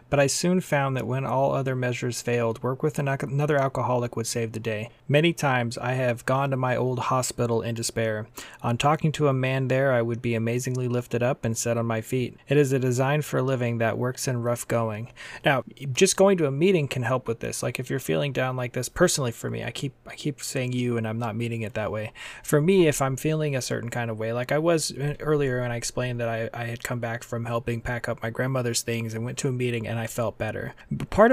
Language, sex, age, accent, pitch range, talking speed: English, male, 30-49, American, 115-135 Hz, 250 wpm